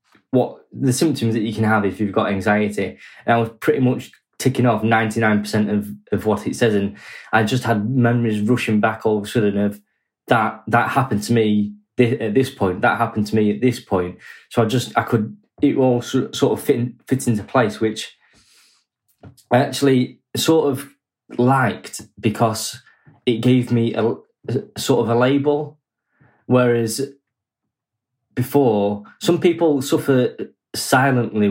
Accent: British